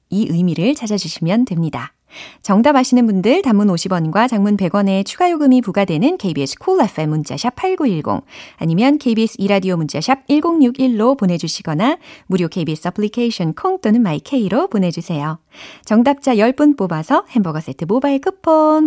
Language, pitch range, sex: Korean, 175-275 Hz, female